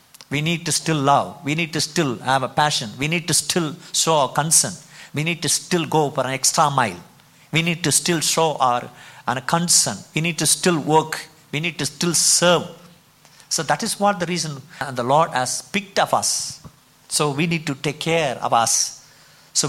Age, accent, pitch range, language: 50-69, native, 140-175 Hz, Tamil